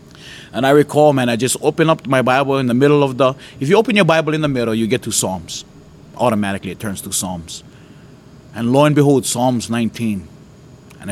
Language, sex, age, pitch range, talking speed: English, male, 30-49, 110-150 Hz, 210 wpm